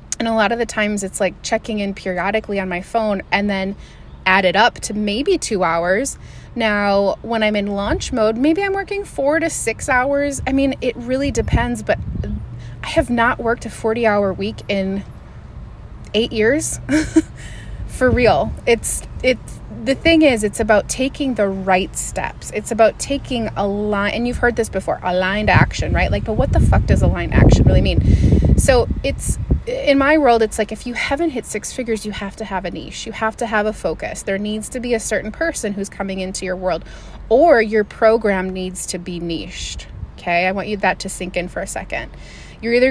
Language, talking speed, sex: English, 205 wpm, female